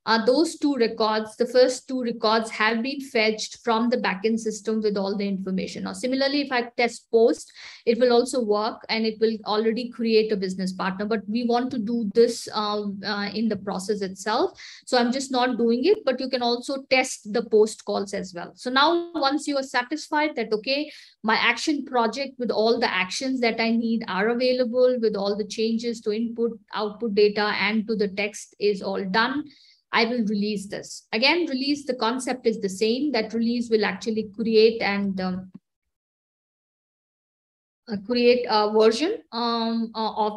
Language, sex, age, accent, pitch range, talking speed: German, female, 50-69, Indian, 210-245 Hz, 185 wpm